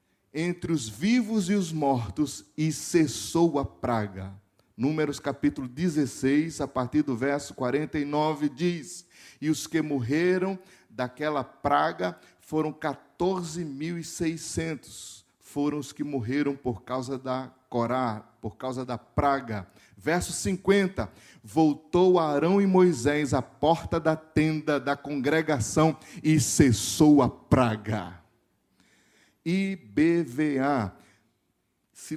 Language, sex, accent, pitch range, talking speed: Portuguese, male, Brazilian, 120-155 Hz, 105 wpm